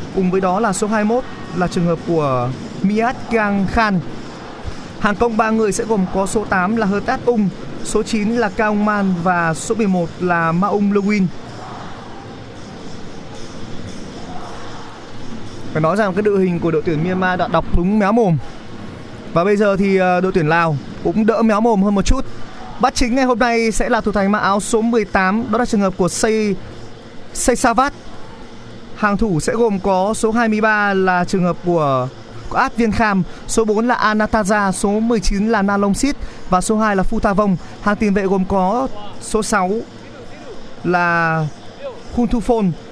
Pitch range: 175-220 Hz